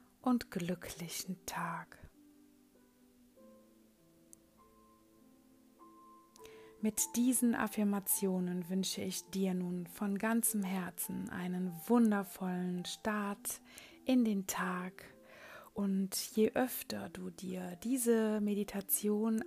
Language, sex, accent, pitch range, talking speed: German, female, German, 180-220 Hz, 75 wpm